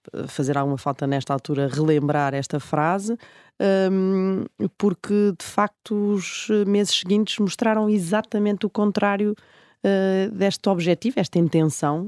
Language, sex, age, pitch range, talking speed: Portuguese, female, 20-39, 145-185 Hz, 110 wpm